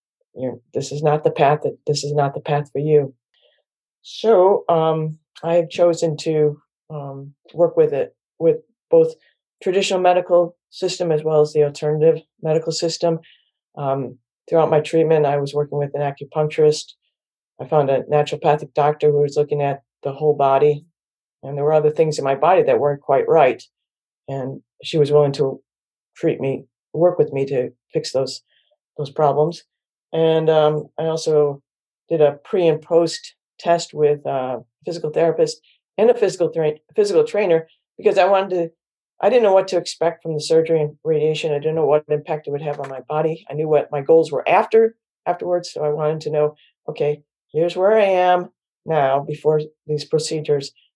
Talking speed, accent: 180 wpm, American